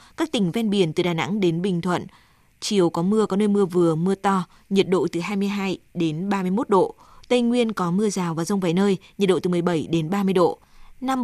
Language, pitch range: Vietnamese, 175-210 Hz